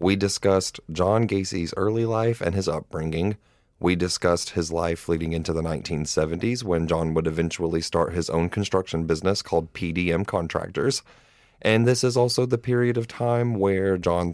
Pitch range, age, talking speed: 85-95 Hz, 30-49, 165 wpm